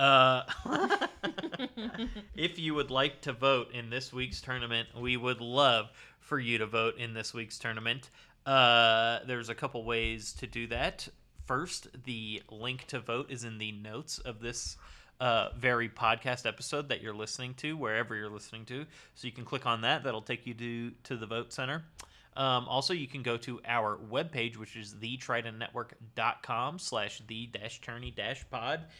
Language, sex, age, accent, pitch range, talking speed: English, male, 30-49, American, 115-145 Hz, 160 wpm